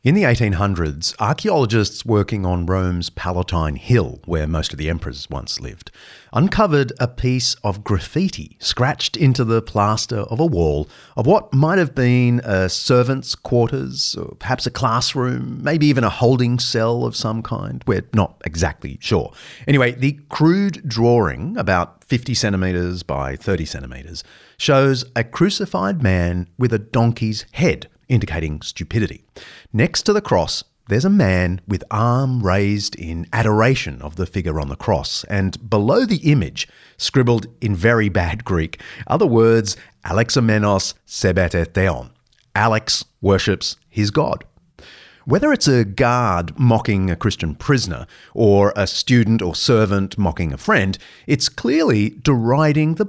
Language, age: English, 40-59